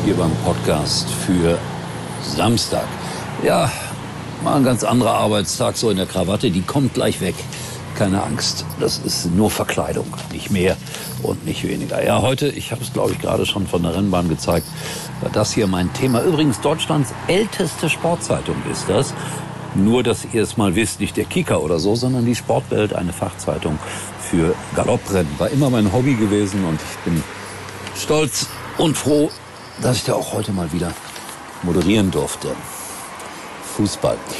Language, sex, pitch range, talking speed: German, male, 85-120 Hz, 160 wpm